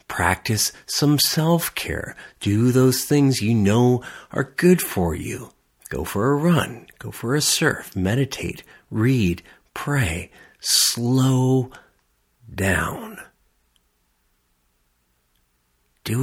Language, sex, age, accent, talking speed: English, male, 50-69, American, 95 wpm